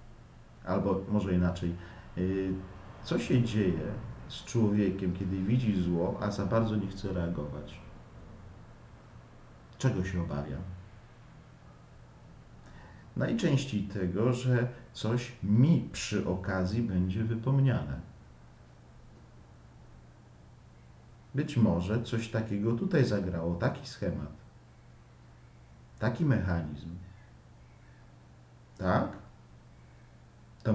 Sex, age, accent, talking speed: male, 40-59, native, 80 wpm